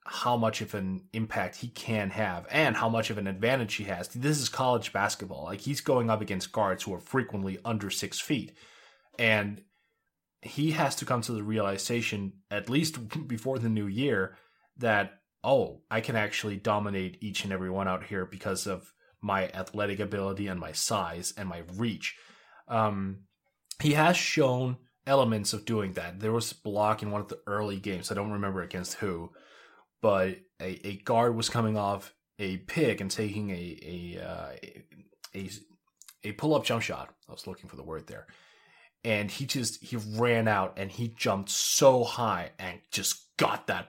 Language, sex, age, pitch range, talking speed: English, male, 20-39, 95-115 Hz, 180 wpm